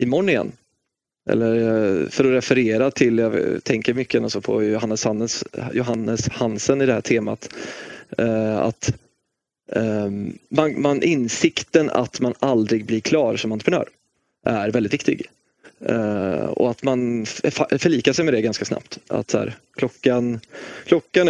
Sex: male